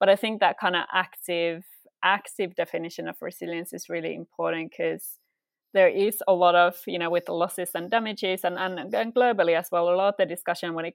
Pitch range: 170-195 Hz